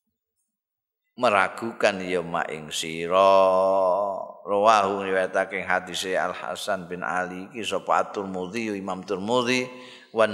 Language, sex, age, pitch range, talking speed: Indonesian, male, 50-69, 100-150 Hz, 120 wpm